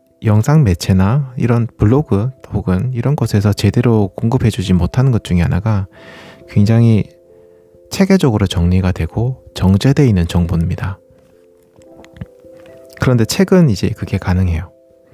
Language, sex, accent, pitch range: Korean, male, native, 90-125 Hz